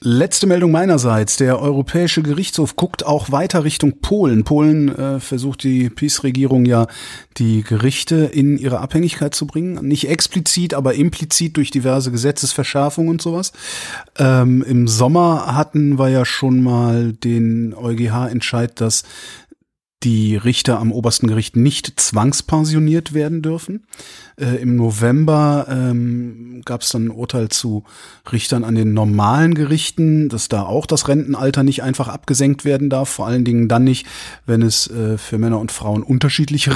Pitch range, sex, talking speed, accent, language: 120-150 Hz, male, 150 wpm, German, German